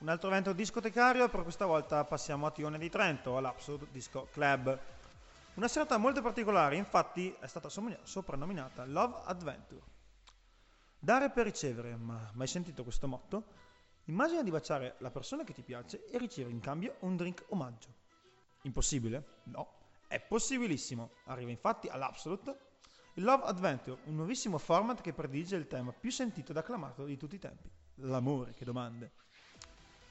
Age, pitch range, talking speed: 30-49, 130-210 Hz, 150 wpm